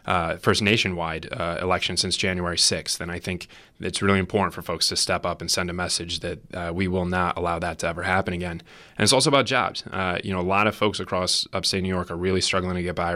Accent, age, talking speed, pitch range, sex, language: American, 20-39, 255 wpm, 90-100 Hz, male, English